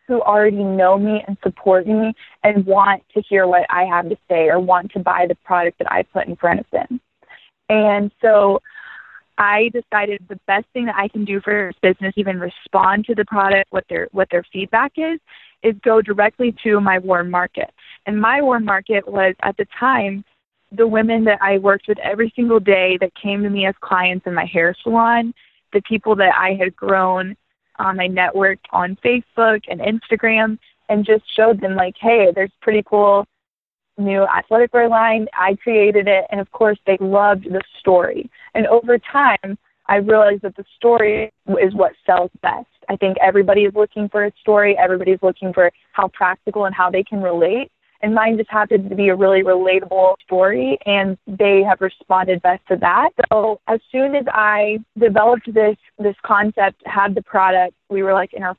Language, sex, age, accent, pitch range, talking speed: English, female, 20-39, American, 190-220 Hz, 195 wpm